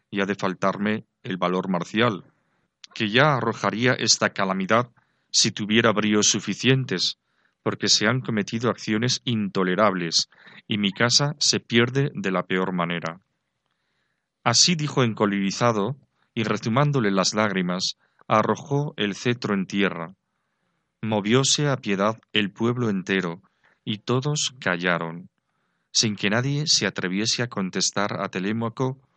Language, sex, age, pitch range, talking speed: Spanish, male, 40-59, 95-120 Hz, 125 wpm